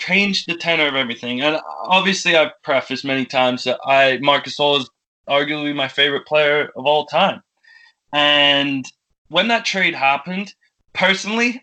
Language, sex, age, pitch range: English, male, 20-39, 140-180 Hz